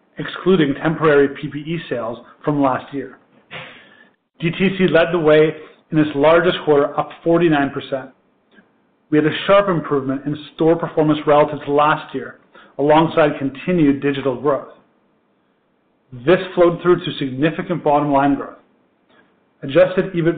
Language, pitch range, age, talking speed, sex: English, 145-170 Hz, 40-59, 125 wpm, male